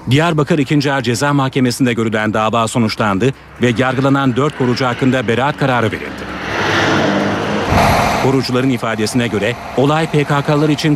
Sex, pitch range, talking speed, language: male, 115-145 Hz, 120 wpm, Turkish